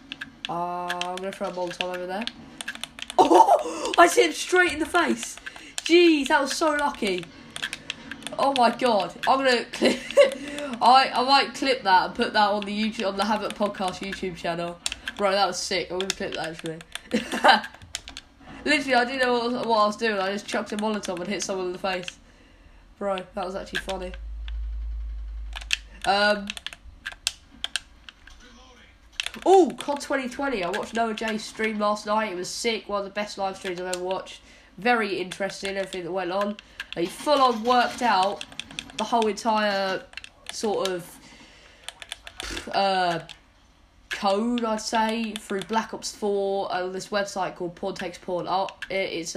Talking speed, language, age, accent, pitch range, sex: 165 wpm, English, 10-29, British, 180-240 Hz, female